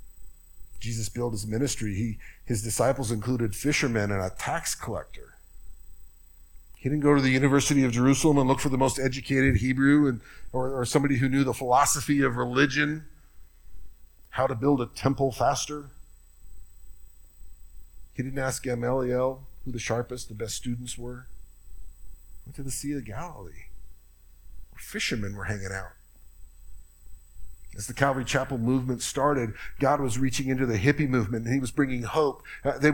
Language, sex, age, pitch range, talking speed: English, male, 50-69, 90-140 Hz, 155 wpm